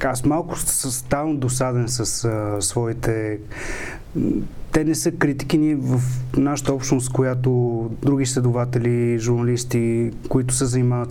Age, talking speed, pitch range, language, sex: 30-49, 120 wpm, 115-135 Hz, Bulgarian, male